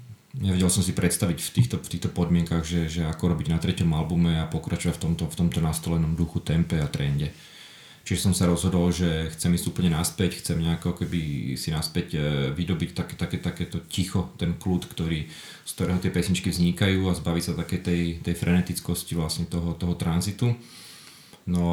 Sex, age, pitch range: male, 30-49, 85-90 Hz